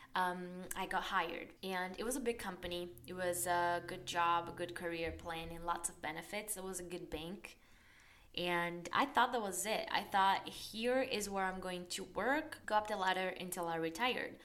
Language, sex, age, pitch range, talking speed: English, female, 20-39, 175-200 Hz, 210 wpm